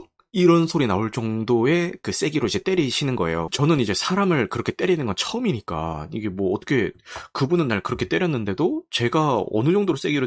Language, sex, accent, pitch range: Korean, male, native, 105-165 Hz